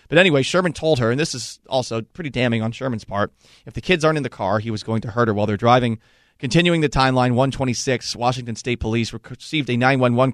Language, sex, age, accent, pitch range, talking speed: English, male, 30-49, American, 115-135 Hz, 230 wpm